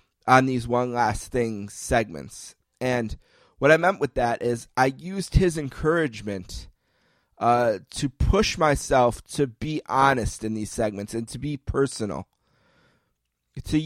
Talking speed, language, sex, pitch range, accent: 140 wpm, English, male, 115-150 Hz, American